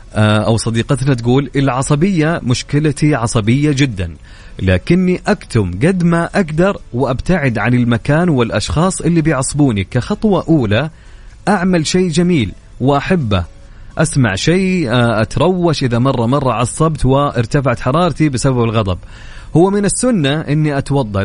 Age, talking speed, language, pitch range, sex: 30-49, 115 wpm, Arabic, 110-145 Hz, male